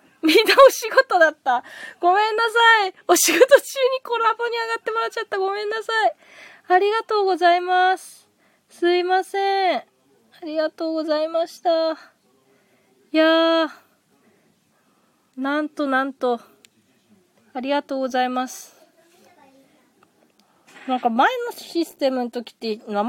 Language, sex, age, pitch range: Japanese, female, 20-39, 220-350 Hz